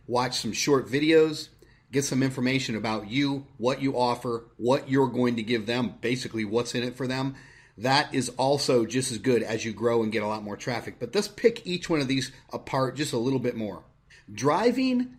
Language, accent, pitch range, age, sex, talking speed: English, American, 120-145 Hz, 30-49, male, 210 wpm